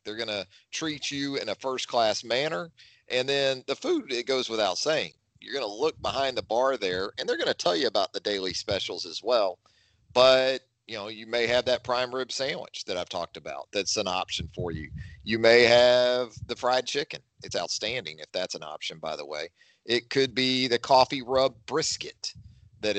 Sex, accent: male, American